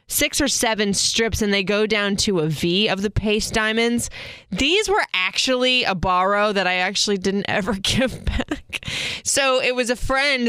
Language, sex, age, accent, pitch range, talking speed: English, female, 20-39, American, 180-225 Hz, 185 wpm